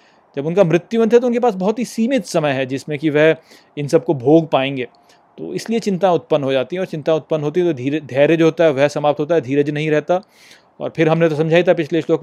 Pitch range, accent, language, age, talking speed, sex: 145-185 Hz, native, Hindi, 30-49, 255 wpm, male